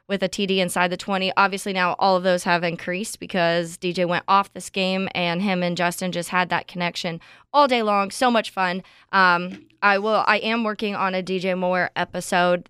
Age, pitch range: 20-39, 180-200 Hz